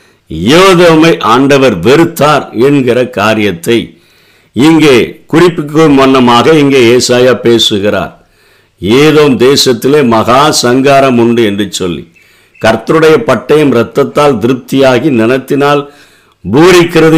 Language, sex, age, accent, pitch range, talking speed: Tamil, male, 60-79, native, 125-155 Hz, 75 wpm